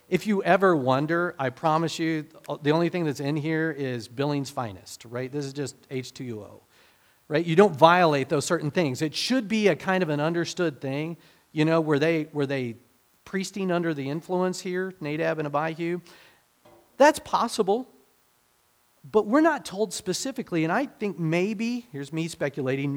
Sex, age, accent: male, 40-59, American